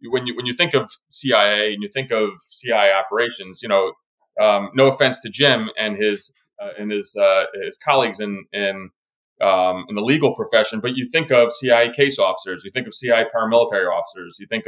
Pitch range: 110-135 Hz